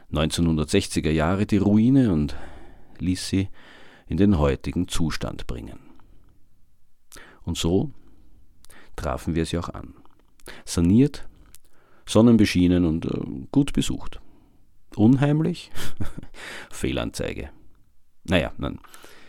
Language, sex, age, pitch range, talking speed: German, male, 50-69, 75-95 Hz, 85 wpm